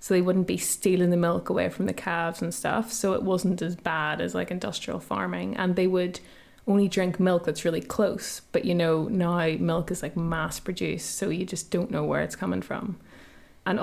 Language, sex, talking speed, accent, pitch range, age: English, female, 215 wpm, Irish, 185-210 Hz, 20-39